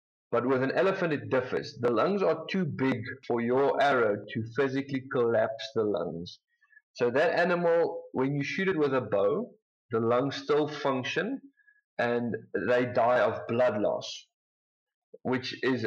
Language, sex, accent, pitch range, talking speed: English, male, South African, 120-160 Hz, 155 wpm